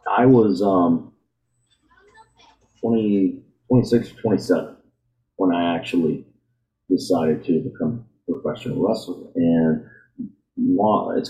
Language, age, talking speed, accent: English, 40-59, 85 wpm, American